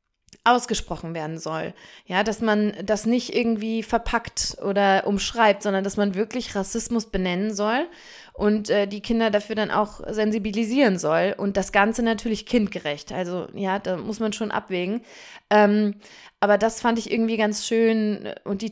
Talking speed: 160 wpm